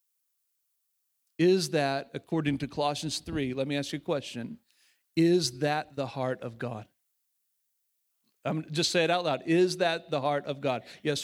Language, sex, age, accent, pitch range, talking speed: English, male, 40-59, American, 140-175 Hz, 165 wpm